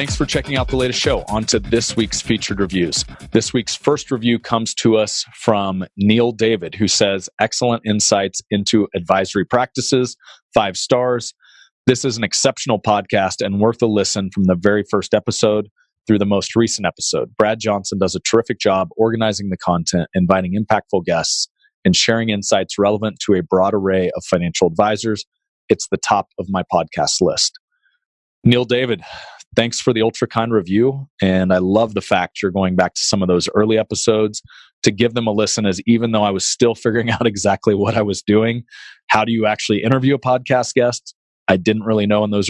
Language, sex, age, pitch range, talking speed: English, male, 40-59, 100-120 Hz, 190 wpm